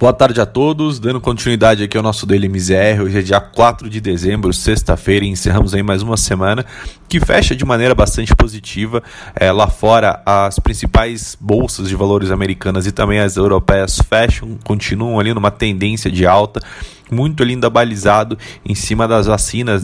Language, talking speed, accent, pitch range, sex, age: Portuguese, 165 wpm, Brazilian, 100-120 Hz, male, 20-39